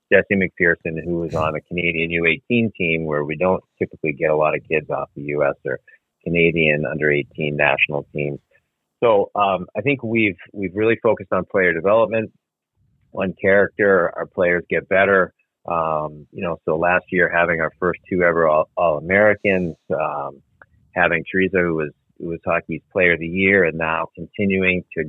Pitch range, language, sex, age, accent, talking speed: 75-95 Hz, English, male, 30-49, American, 170 wpm